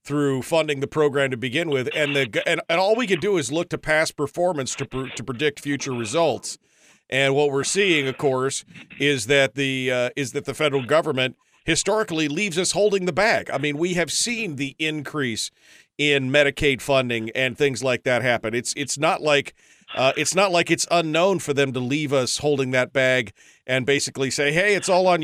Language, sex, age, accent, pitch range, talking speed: English, male, 40-59, American, 135-180 Hz, 205 wpm